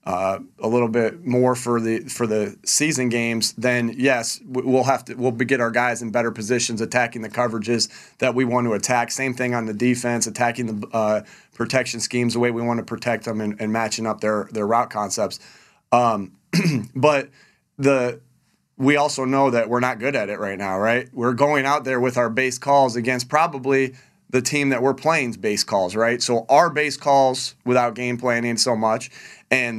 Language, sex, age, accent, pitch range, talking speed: English, male, 30-49, American, 115-130 Hz, 200 wpm